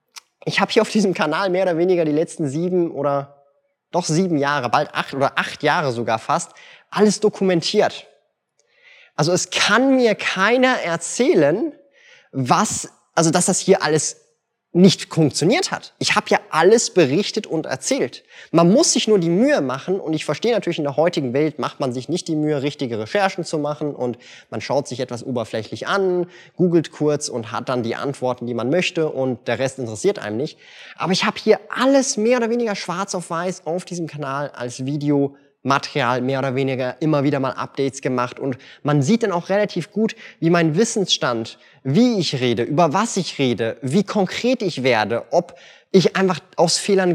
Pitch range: 140-210 Hz